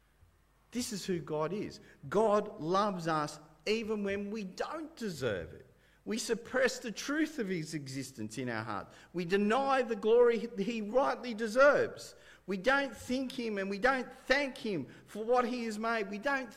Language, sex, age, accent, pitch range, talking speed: English, male, 50-69, Australian, 180-245 Hz, 170 wpm